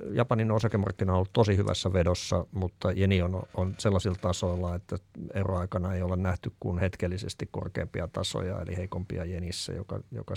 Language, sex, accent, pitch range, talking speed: Finnish, male, native, 90-100 Hz, 155 wpm